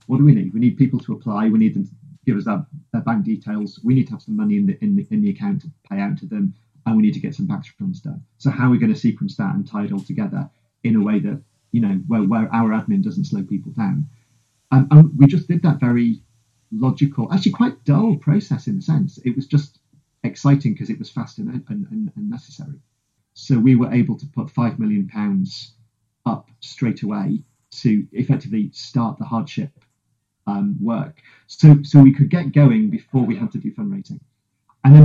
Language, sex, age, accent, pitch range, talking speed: English, male, 40-59, British, 120-195 Hz, 225 wpm